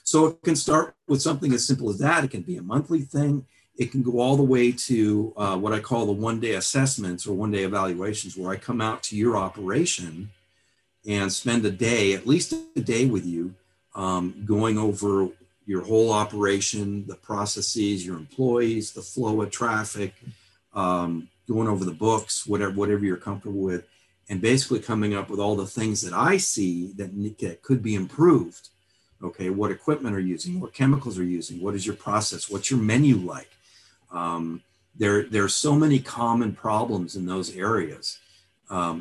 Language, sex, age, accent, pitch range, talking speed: English, male, 50-69, American, 95-120 Hz, 185 wpm